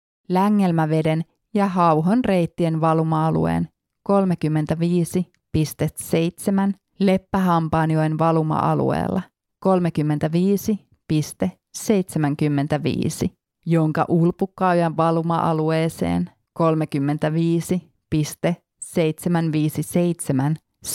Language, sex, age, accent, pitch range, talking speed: Finnish, female, 30-49, native, 155-180 Hz, 35 wpm